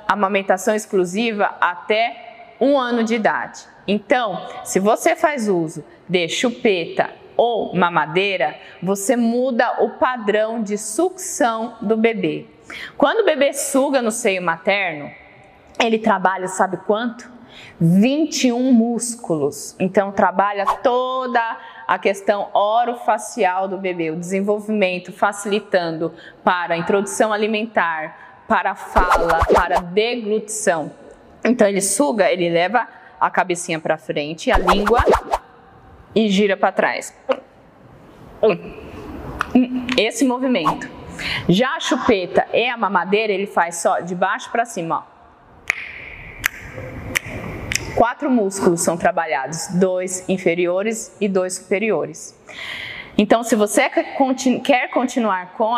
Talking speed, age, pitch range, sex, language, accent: 110 wpm, 20-39, 185-235 Hz, female, Portuguese, Brazilian